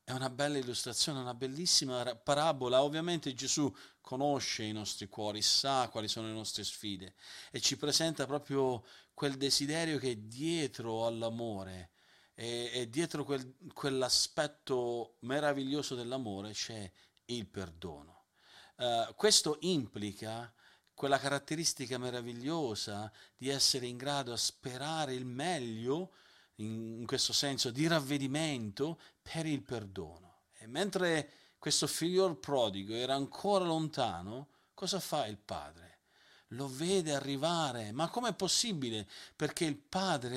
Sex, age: male, 40-59